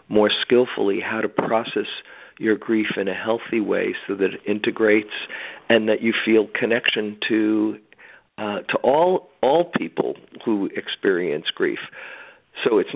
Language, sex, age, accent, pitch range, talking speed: English, male, 50-69, American, 100-120 Hz, 145 wpm